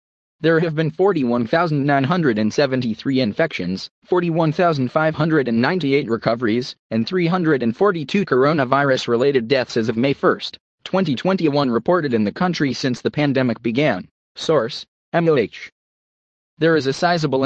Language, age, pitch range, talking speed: English, 30-49, 120-160 Hz, 105 wpm